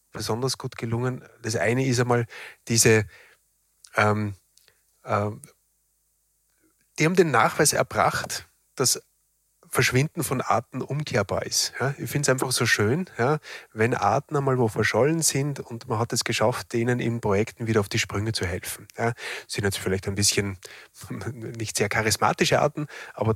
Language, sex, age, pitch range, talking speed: German, male, 30-49, 105-125 Hz, 150 wpm